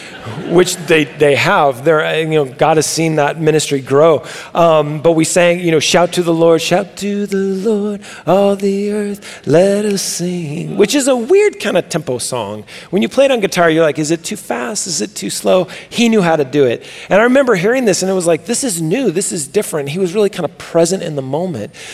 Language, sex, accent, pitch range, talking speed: English, male, American, 155-195 Hz, 240 wpm